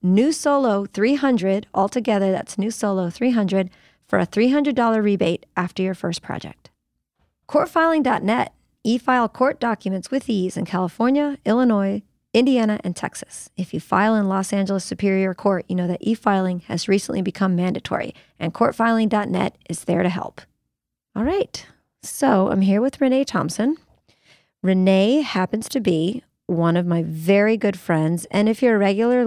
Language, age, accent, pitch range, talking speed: English, 30-49, American, 180-220 Hz, 155 wpm